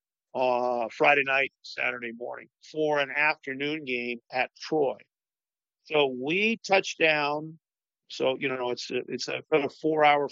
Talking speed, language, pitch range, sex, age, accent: 130 wpm, English, 130-155 Hz, male, 50-69, American